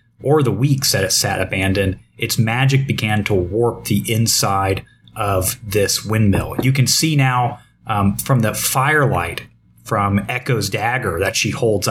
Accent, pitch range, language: American, 105-130 Hz, English